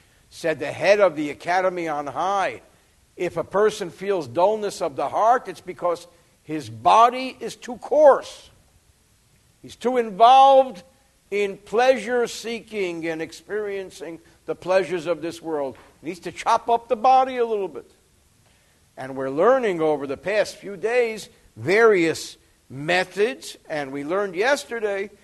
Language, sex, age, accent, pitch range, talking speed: English, male, 60-79, American, 155-235 Hz, 140 wpm